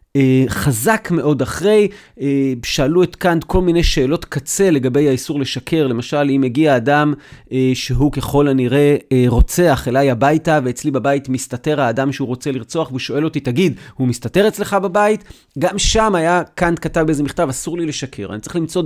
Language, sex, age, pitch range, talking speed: Hebrew, male, 30-49, 130-165 Hz, 160 wpm